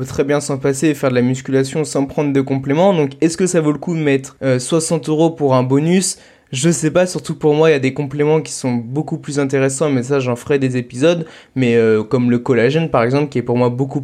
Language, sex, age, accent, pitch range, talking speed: French, male, 20-39, French, 135-165 Hz, 260 wpm